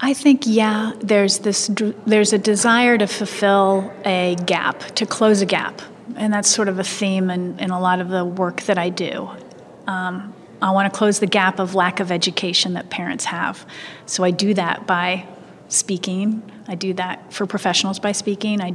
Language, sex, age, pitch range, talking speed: English, female, 30-49, 185-210 Hz, 190 wpm